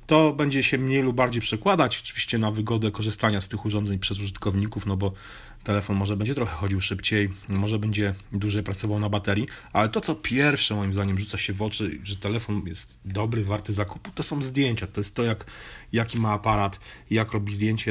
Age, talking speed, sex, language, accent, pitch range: 30-49, 200 wpm, male, Polish, native, 105-125 Hz